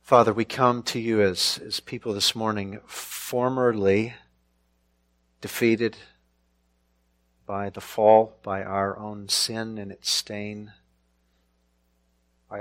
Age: 40-59